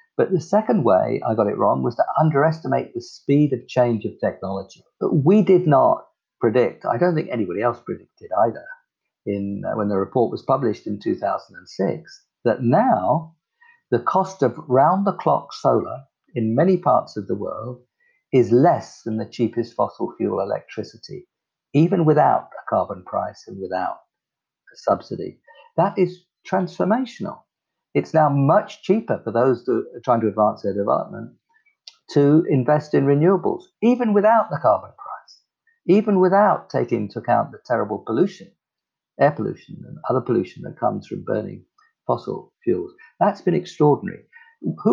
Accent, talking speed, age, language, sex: British, 155 wpm, 50-69, English, male